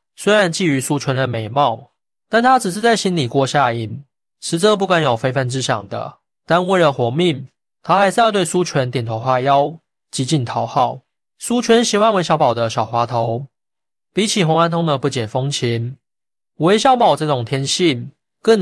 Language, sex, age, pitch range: Chinese, male, 20-39, 130-175 Hz